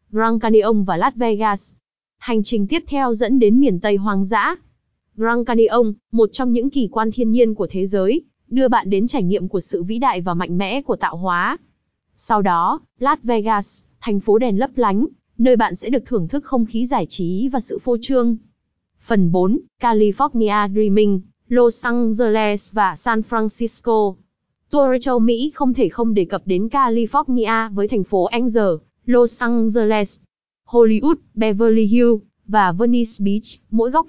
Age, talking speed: 20-39, 175 wpm